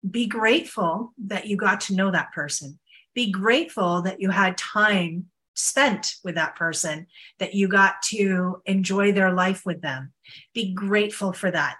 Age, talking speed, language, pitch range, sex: 40-59, 165 wpm, English, 180-225 Hz, female